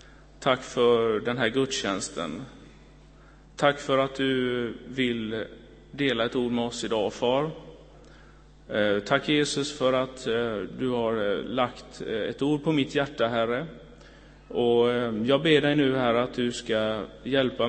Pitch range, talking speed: 115-140 Hz, 135 wpm